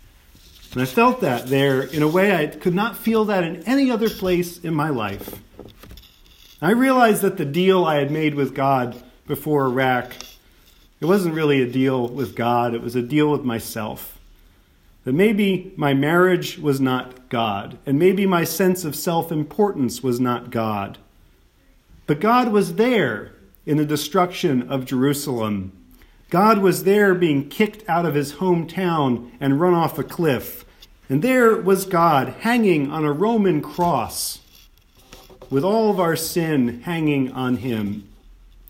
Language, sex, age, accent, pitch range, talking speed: English, male, 40-59, American, 120-185 Hz, 155 wpm